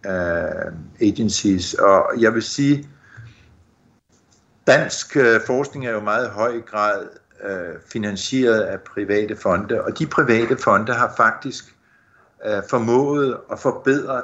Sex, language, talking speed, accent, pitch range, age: male, Danish, 105 wpm, native, 100-120 Hz, 60-79